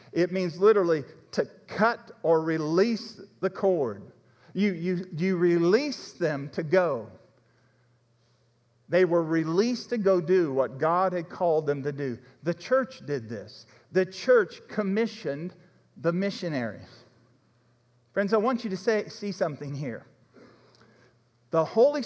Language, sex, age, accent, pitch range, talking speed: English, male, 50-69, American, 140-200 Hz, 130 wpm